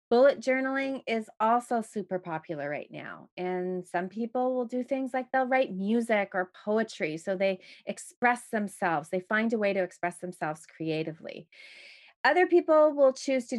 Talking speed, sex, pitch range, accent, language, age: 165 wpm, female, 190-260 Hz, American, English, 30-49